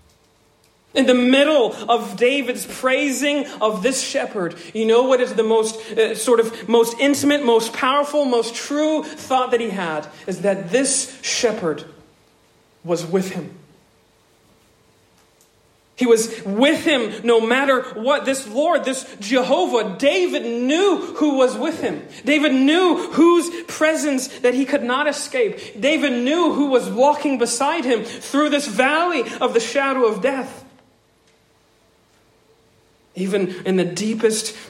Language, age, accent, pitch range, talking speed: English, 40-59, American, 200-265 Hz, 140 wpm